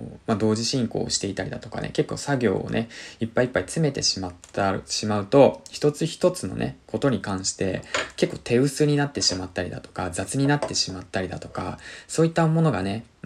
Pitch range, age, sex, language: 95-125 Hz, 20-39, male, Japanese